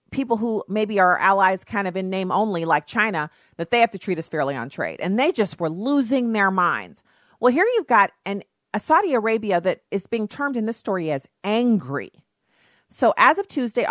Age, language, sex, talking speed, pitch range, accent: 40-59, English, female, 205 wpm, 175-225 Hz, American